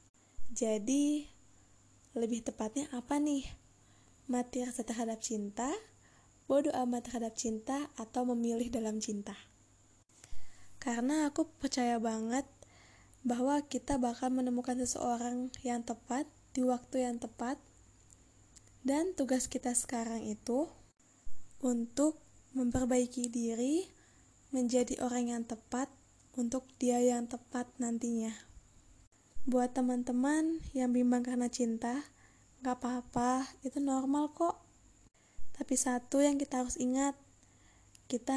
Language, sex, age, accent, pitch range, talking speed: Indonesian, female, 20-39, native, 235-270 Hz, 105 wpm